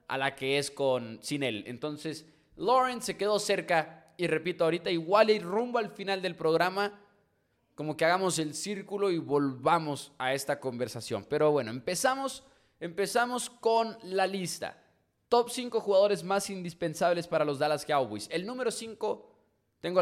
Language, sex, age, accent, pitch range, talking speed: English, male, 20-39, Mexican, 140-190 Hz, 155 wpm